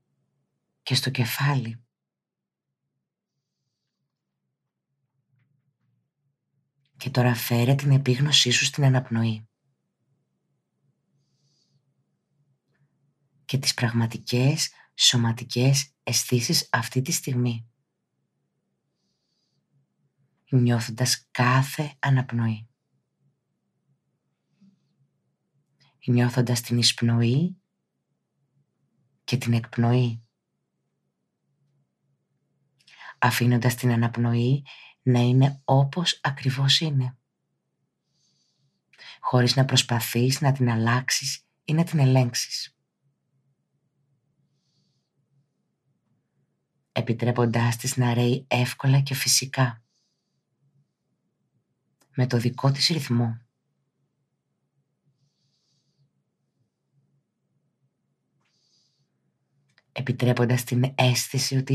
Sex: female